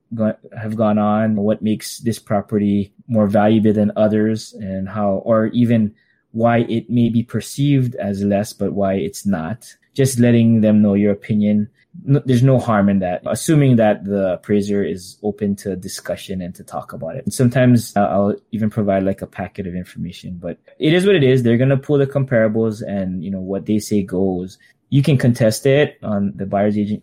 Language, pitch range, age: English, 100-120 Hz, 20-39